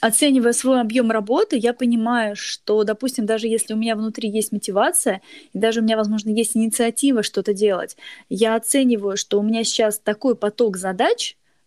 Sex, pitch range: female, 205-240 Hz